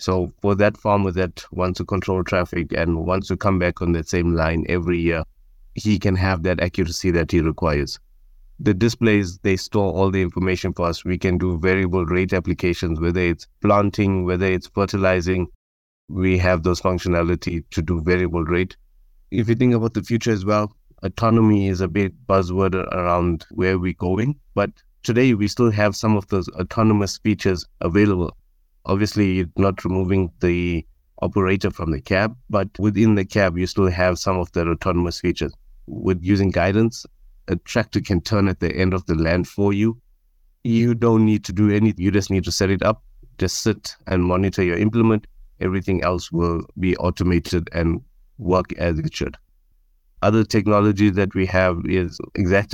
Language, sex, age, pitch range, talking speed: English, male, 20-39, 85-100 Hz, 180 wpm